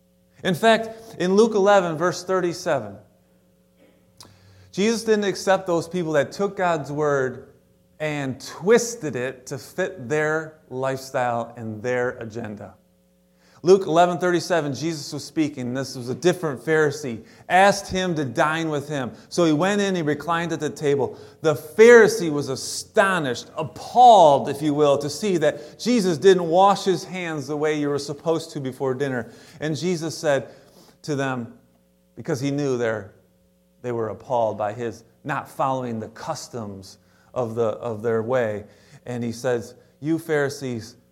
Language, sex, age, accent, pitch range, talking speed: English, male, 30-49, American, 105-160 Hz, 150 wpm